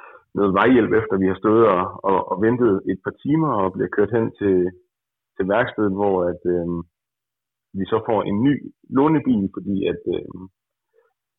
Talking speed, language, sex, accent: 170 wpm, Danish, male, native